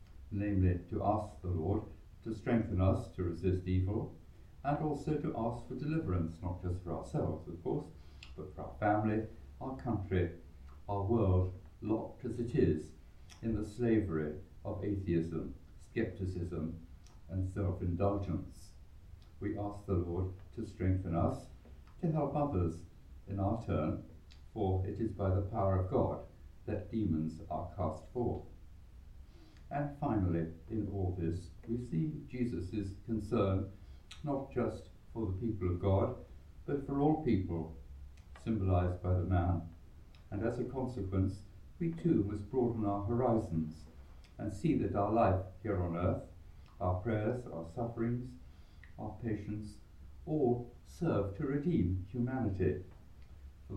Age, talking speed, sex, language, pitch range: 60-79, 135 wpm, male, English, 85-110 Hz